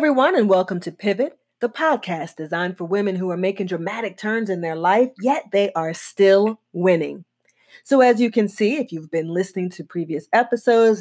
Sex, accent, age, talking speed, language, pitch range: female, American, 30-49, 190 wpm, English, 170-230 Hz